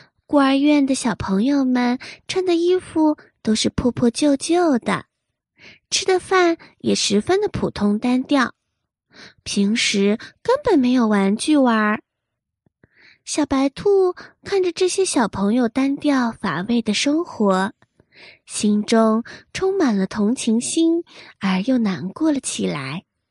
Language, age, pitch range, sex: Chinese, 20-39, 230-335 Hz, female